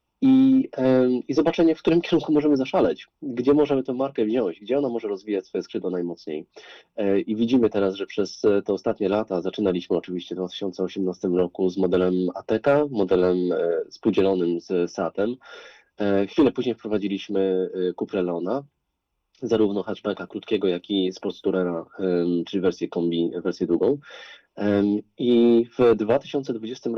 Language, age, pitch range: Polish, 20-39, 90-115 Hz